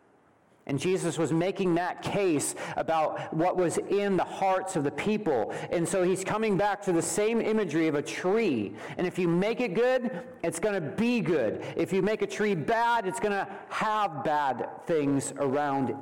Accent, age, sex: American, 40-59, male